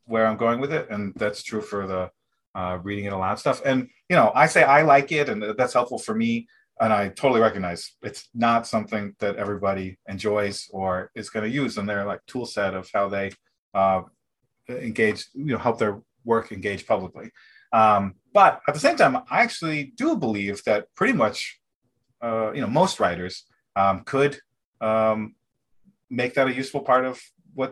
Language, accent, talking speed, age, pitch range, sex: English, American, 195 wpm, 30-49, 100-125 Hz, male